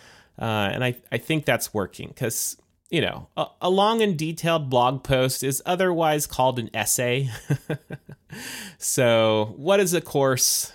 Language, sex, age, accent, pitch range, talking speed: English, male, 30-49, American, 105-140 Hz, 150 wpm